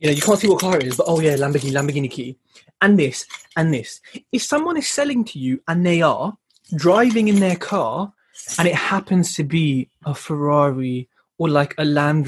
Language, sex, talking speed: English, male, 210 wpm